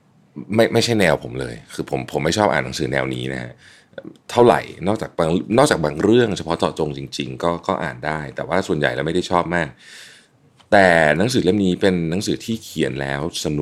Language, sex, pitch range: Thai, male, 75-100 Hz